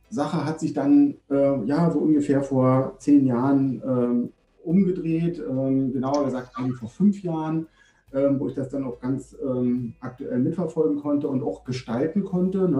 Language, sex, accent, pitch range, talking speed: German, male, German, 130-170 Hz, 160 wpm